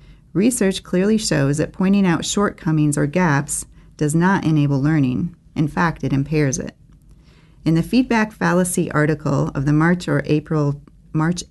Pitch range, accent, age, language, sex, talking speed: 145-180 Hz, American, 40-59, English, female, 150 wpm